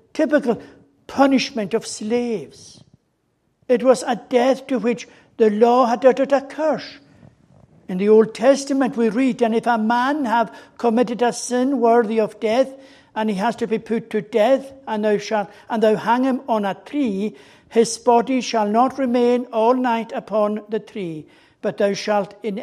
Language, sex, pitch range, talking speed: English, male, 180-235 Hz, 165 wpm